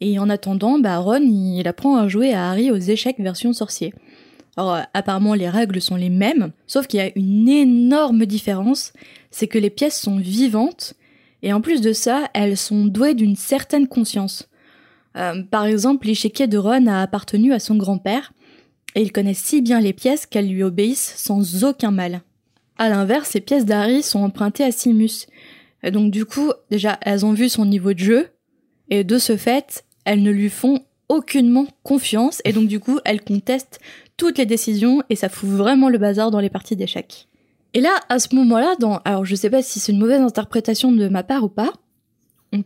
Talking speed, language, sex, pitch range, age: 200 wpm, French, female, 200-260 Hz, 20-39